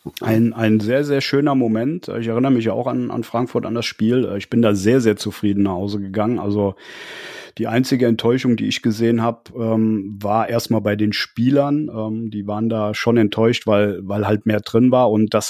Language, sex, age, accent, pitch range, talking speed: German, male, 30-49, German, 110-130 Hz, 200 wpm